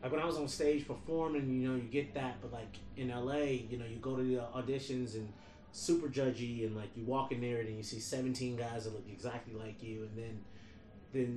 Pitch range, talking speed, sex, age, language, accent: 110-135 Hz, 240 wpm, male, 30-49, English, American